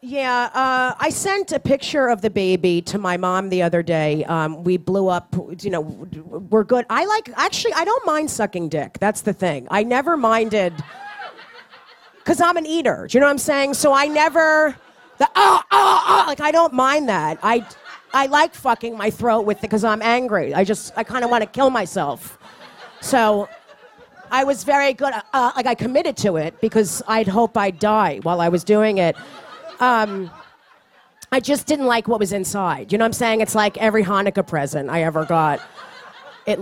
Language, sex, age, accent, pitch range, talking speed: English, female, 40-59, American, 190-290 Hz, 195 wpm